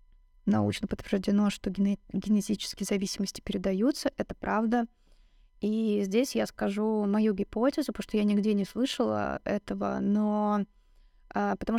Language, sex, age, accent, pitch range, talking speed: Russian, female, 20-39, native, 195-220 Hz, 115 wpm